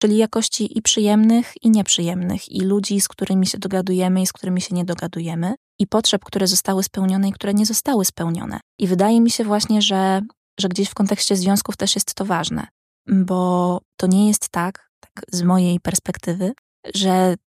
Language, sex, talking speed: Polish, female, 180 wpm